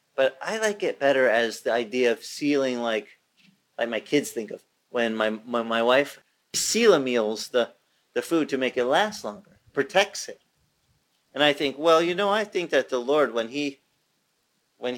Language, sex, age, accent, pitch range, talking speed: English, male, 40-59, American, 125-205 Hz, 190 wpm